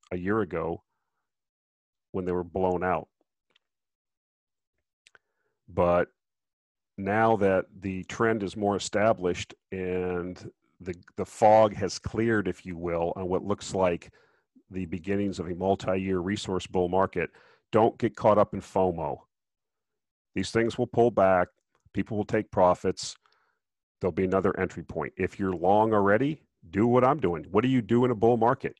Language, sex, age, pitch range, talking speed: English, male, 40-59, 90-105 Hz, 150 wpm